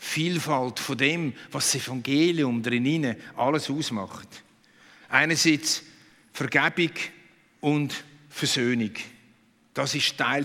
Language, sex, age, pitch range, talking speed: German, male, 50-69, 140-190 Hz, 90 wpm